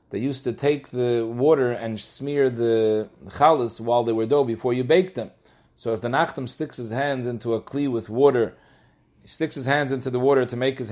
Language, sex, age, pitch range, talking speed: English, male, 40-59, 115-140 Hz, 220 wpm